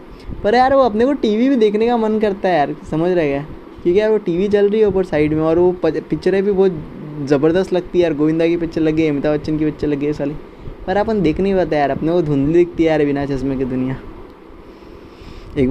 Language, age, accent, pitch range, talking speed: Hindi, 20-39, native, 145-180 Hz, 245 wpm